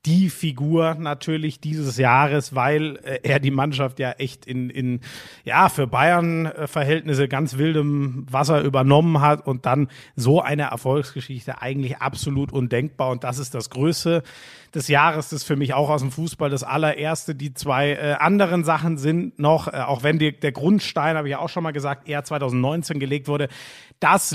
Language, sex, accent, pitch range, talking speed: German, male, German, 135-165 Hz, 170 wpm